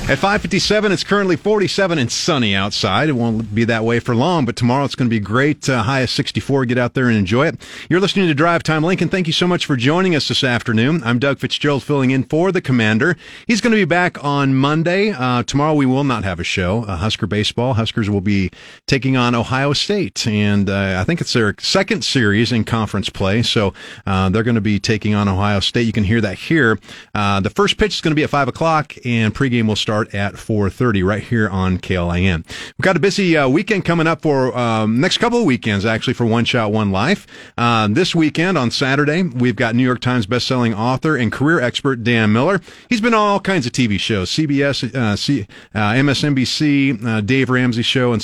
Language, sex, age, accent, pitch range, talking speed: English, male, 40-59, American, 110-150 Hz, 225 wpm